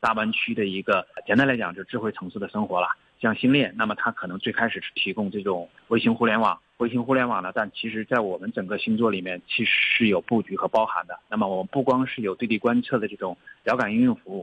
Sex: male